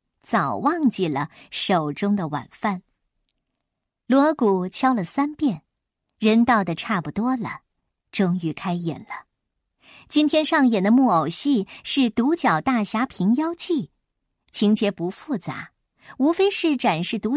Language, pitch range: Chinese, 180-275 Hz